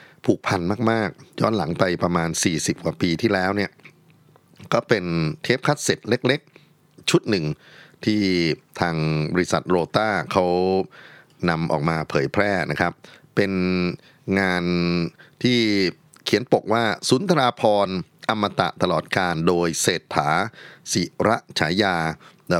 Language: Thai